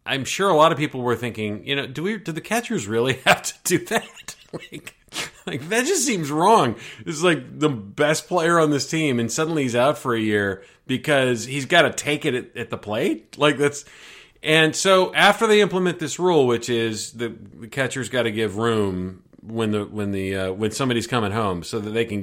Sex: male